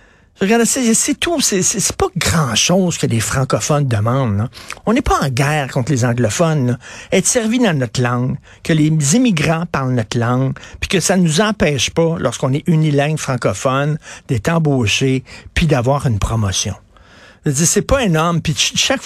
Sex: male